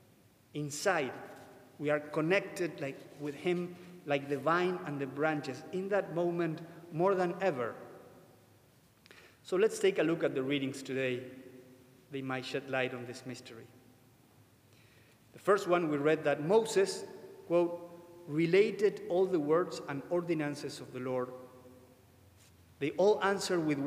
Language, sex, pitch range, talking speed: English, male, 130-180 Hz, 140 wpm